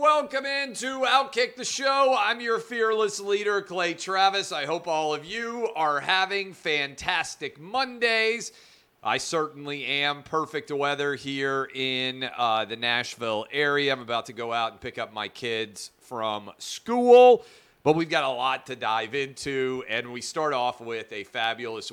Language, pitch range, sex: English, 120-170 Hz, male